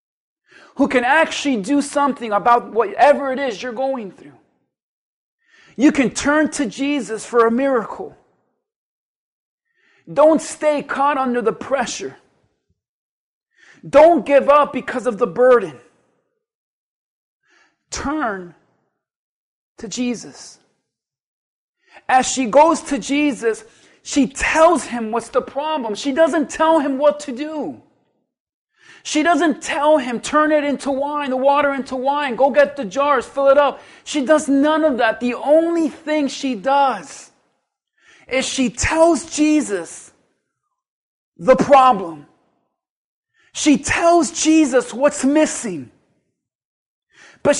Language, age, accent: English, 40-59, American